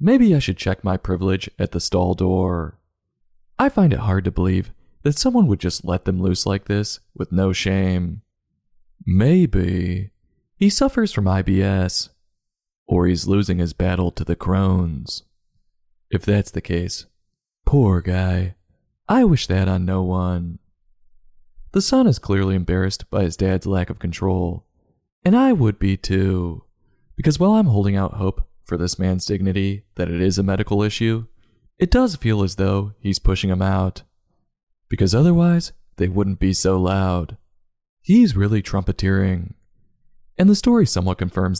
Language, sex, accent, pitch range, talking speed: English, male, American, 90-110 Hz, 155 wpm